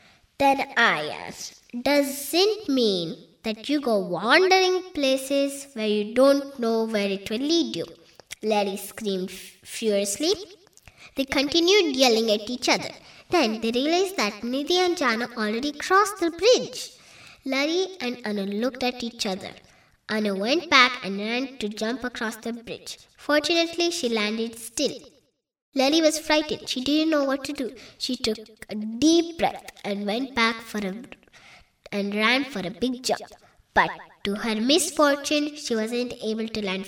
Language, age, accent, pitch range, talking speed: Kannada, 20-39, native, 220-300 Hz, 155 wpm